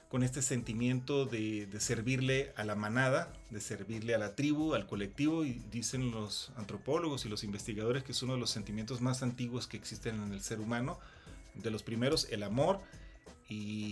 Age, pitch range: 40-59, 110-135 Hz